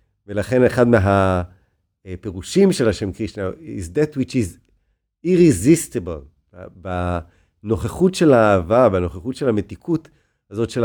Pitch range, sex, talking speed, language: 100-145 Hz, male, 105 wpm, Hebrew